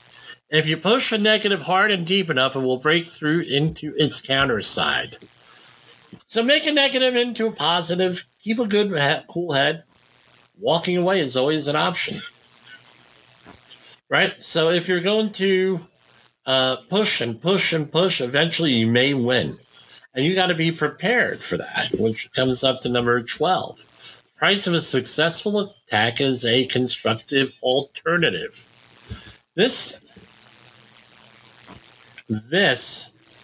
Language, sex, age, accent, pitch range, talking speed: English, male, 50-69, American, 120-185 Hz, 135 wpm